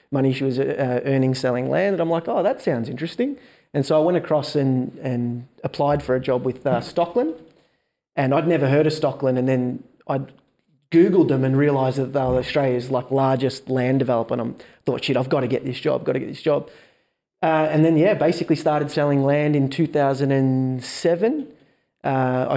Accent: Australian